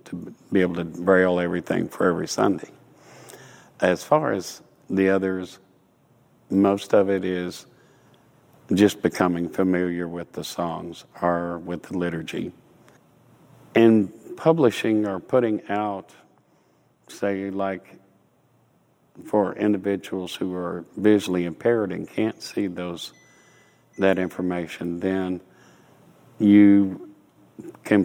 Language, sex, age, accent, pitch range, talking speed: English, male, 50-69, American, 90-100 Hz, 105 wpm